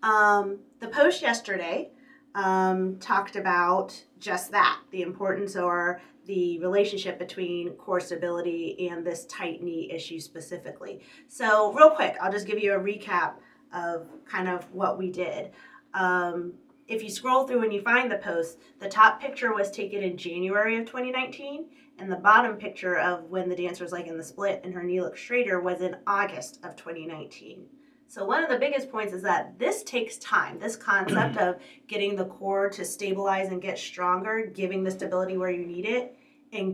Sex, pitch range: female, 180-235 Hz